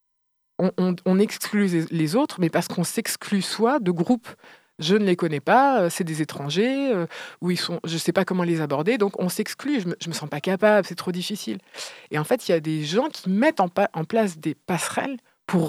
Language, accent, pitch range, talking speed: French, French, 155-205 Hz, 235 wpm